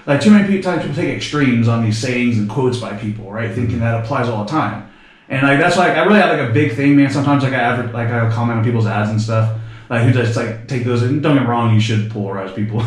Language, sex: English, male